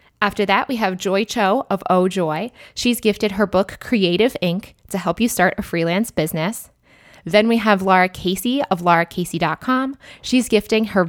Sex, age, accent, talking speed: female, 20-39, American, 175 wpm